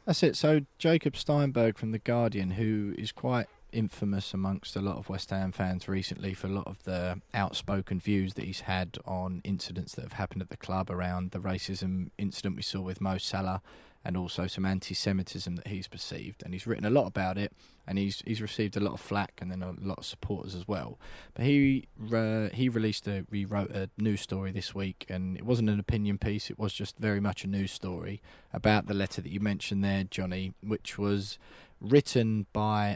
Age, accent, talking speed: 20-39, British, 210 wpm